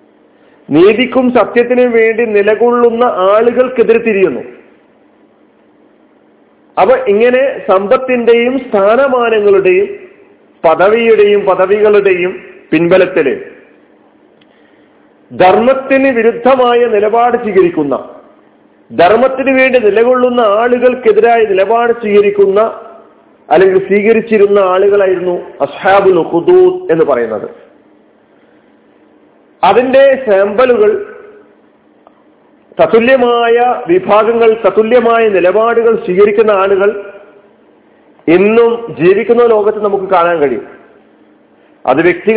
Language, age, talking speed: Malayalam, 40-59, 60 wpm